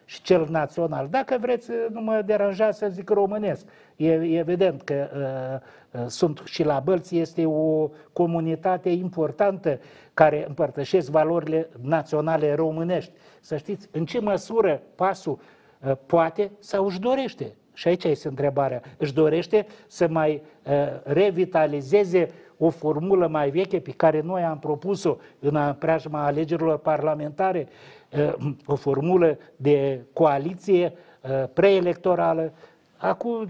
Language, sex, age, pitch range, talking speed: Romanian, male, 50-69, 150-195 Hz, 115 wpm